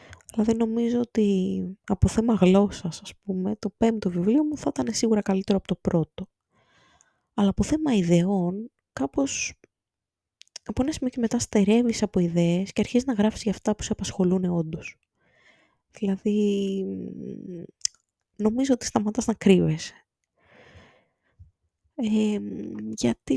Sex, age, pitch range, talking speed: female, 20-39, 180-230 Hz, 130 wpm